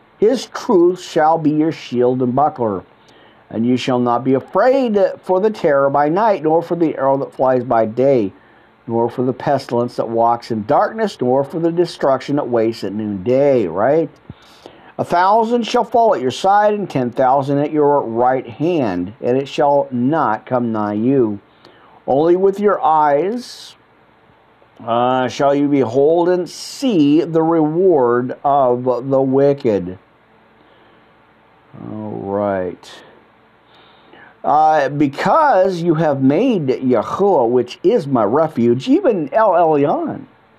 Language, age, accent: English, 50-69, American